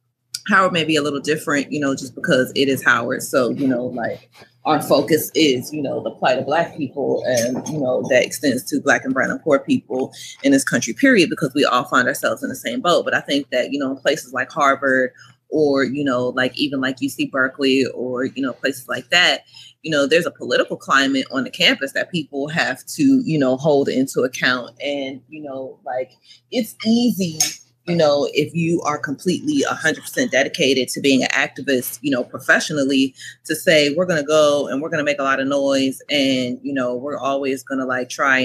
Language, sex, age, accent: English, female, 30-49, American